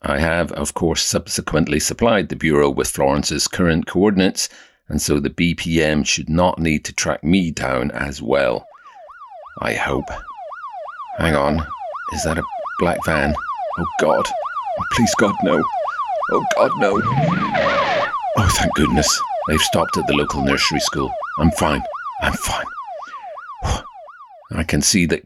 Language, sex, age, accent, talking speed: English, male, 50-69, British, 145 wpm